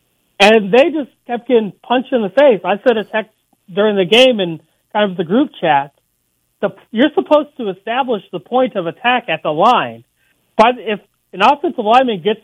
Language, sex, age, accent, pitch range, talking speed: English, male, 40-59, American, 185-250 Hz, 190 wpm